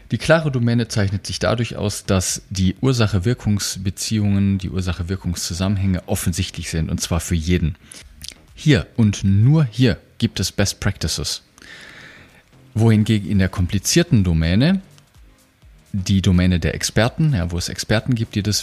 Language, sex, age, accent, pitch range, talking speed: German, male, 30-49, German, 90-115 Hz, 140 wpm